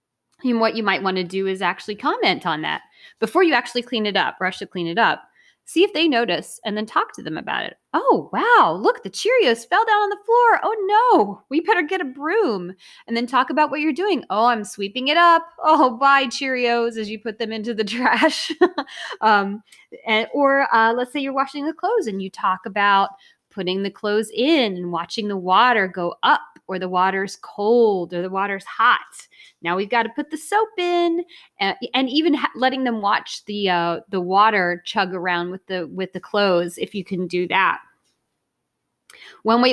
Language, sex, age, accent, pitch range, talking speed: English, female, 20-39, American, 190-270 Hz, 205 wpm